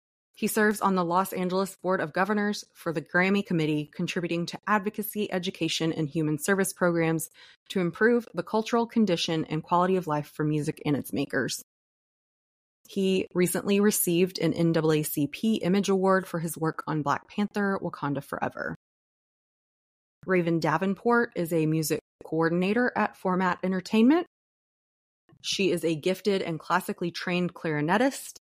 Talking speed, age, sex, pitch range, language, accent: 140 wpm, 20-39, female, 160-195 Hz, English, American